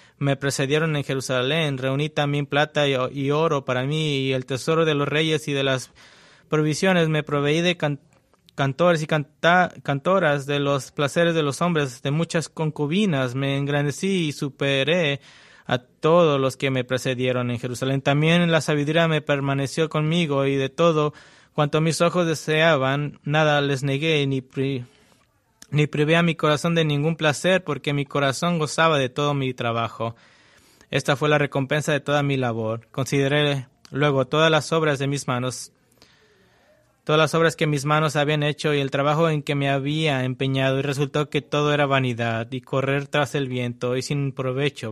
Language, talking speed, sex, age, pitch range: English, 175 wpm, male, 20-39, 135-155 Hz